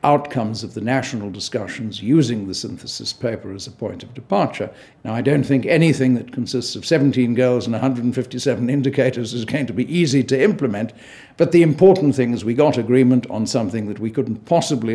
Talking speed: 195 wpm